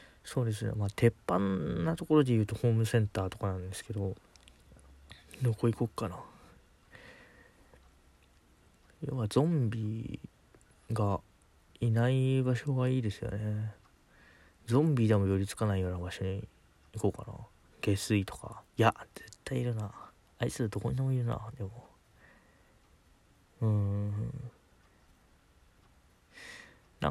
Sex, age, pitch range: male, 20-39, 95-115 Hz